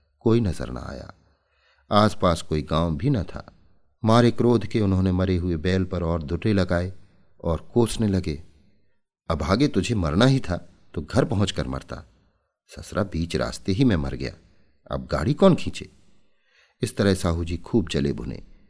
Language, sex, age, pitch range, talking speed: Hindi, male, 50-69, 80-100 Hz, 165 wpm